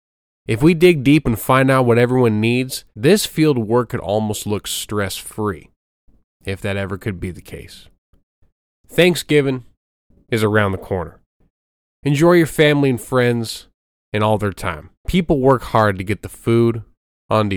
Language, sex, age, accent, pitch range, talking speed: English, male, 20-39, American, 95-135 Hz, 160 wpm